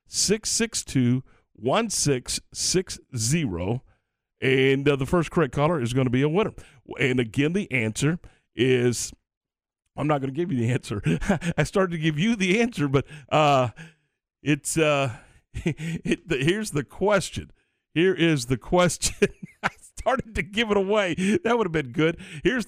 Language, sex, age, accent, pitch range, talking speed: English, male, 50-69, American, 125-175 Hz, 180 wpm